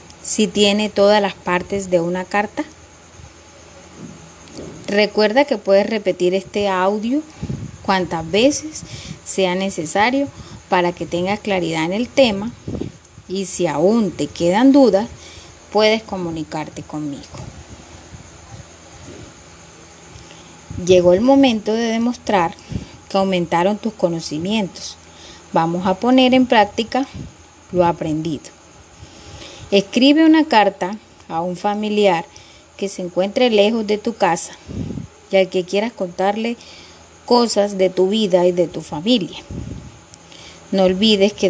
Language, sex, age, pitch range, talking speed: Spanish, female, 30-49, 180-225 Hz, 115 wpm